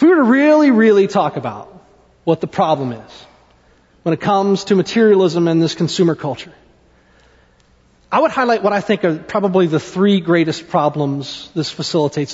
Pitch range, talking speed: 135-195 Hz, 170 wpm